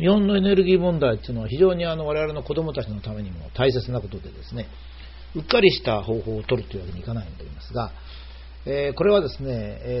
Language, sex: Japanese, male